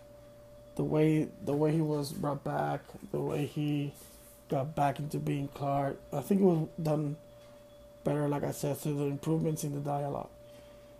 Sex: male